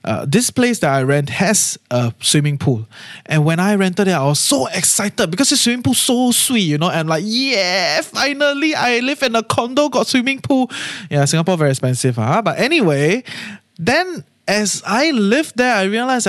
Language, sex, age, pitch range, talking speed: English, male, 20-39, 140-230 Hz, 210 wpm